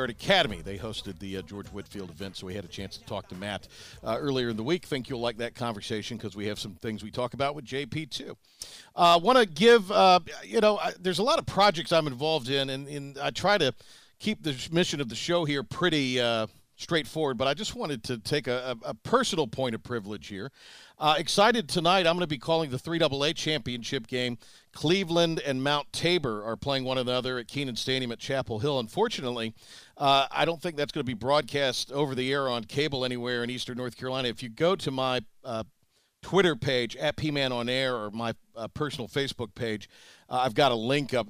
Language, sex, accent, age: English, male, American, 50-69